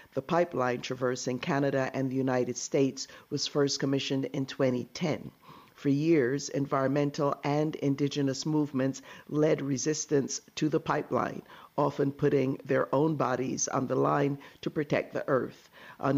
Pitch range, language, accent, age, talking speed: 130-150 Hz, English, American, 50-69, 135 wpm